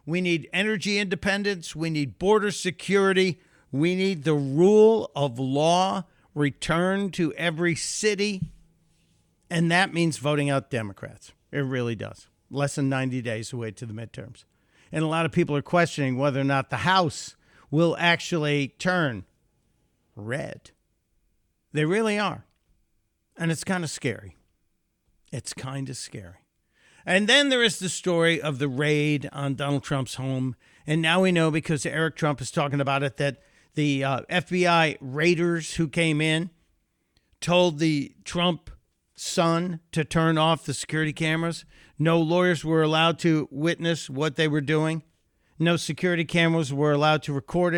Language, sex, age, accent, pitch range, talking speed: English, male, 50-69, American, 140-170 Hz, 155 wpm